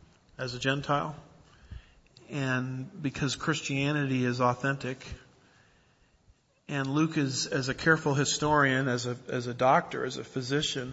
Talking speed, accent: 125 wpm, American